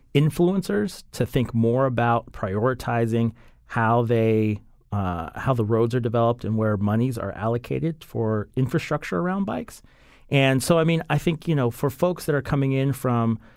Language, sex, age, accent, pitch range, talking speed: English, male, 40-59, American, 110-135 Hz, 170 wpm